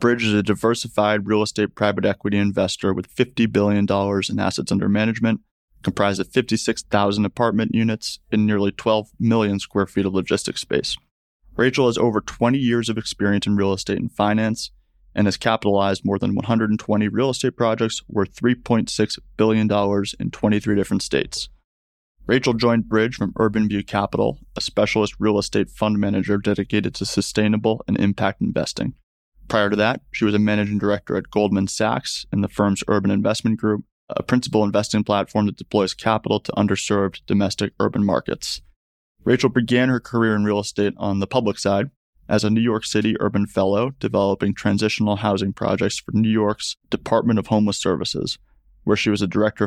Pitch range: 100-110 Hz